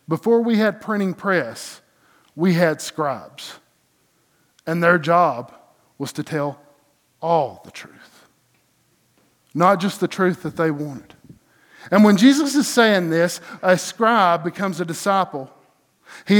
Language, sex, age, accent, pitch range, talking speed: English, male, 50-69, American, 155-195 Hz, 130 wpm